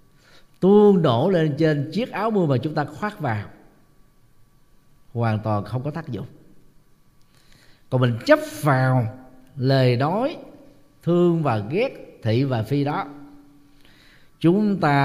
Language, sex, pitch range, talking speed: Vietnamese, male, 125-155 Hz, 130 wpm